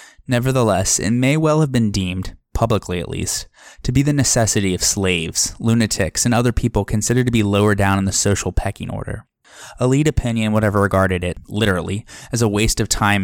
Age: 10-29